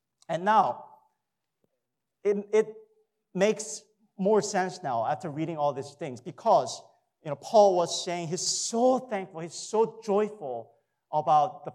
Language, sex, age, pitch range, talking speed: English, male, 40-59, 140-185 Hz, 140 wpm